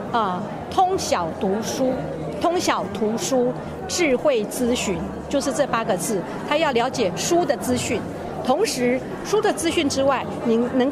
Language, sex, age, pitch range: Chinese, female, 50-69, 225-305 Hz